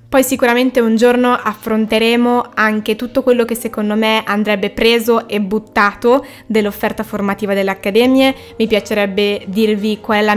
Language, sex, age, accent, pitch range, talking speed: Italian, female, 20-39, native, 210-240 Hz, 145 wpm